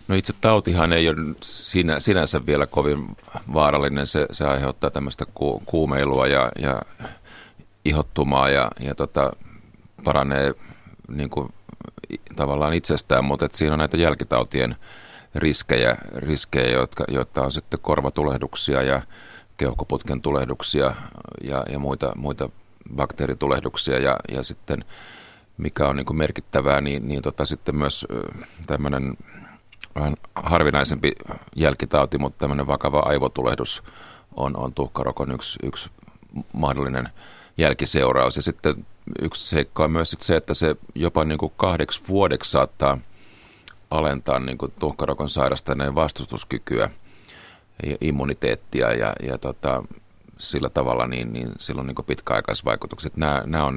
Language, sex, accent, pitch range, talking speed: Finnish, male, native, 70-80 Hz, 120 wpm